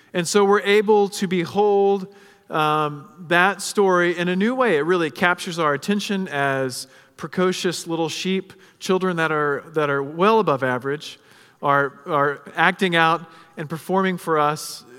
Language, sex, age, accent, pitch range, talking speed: English, male, 40-59, American, 150-195 Hz, 150 wpm